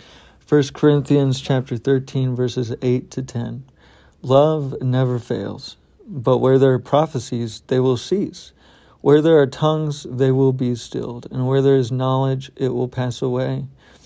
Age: 50-69